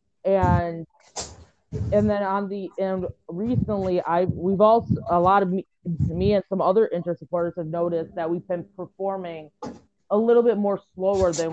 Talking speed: 160 wpm